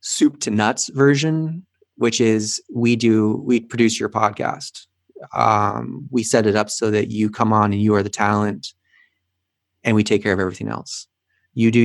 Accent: American